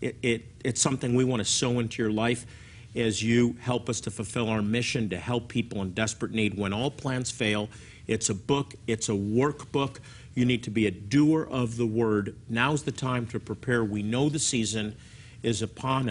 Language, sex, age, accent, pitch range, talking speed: English, male, 50-69, American, 110-130 Hz, 200 wpm